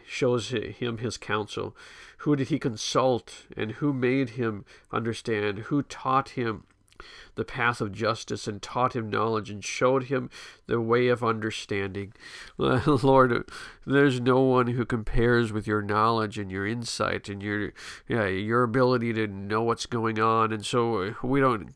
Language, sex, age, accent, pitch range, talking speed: English, male, 50-69, American, 110-125 Hz, 160 wpm